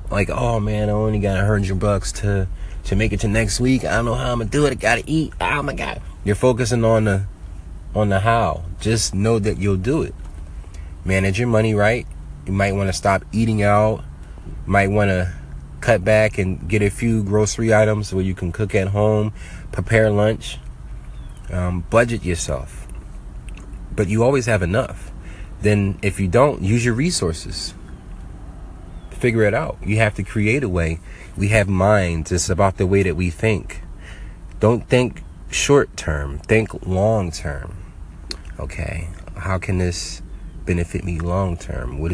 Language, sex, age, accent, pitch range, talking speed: English, male, 30-49, American, 85-105 Hz, 180 wpm